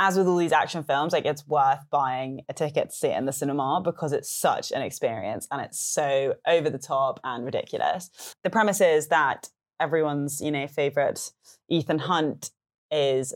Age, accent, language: 20-39, British, English